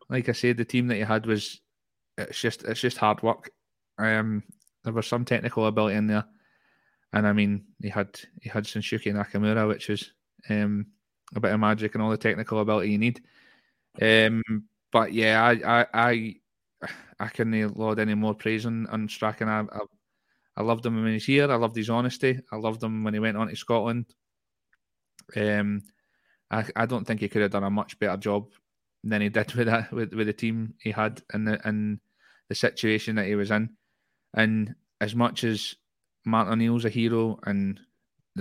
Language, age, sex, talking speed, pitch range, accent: English, 20-39, male, 200 wpm, 105-115 Hz, British